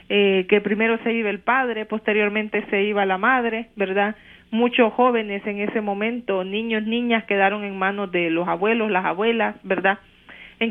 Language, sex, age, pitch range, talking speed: English, female, 40-59, 200-230 Hz, 170 wpm